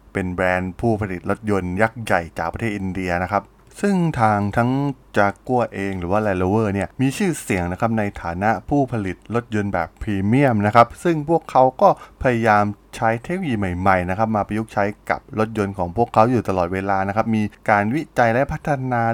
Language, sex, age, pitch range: Thai, male, 20-39, 100-130 Hz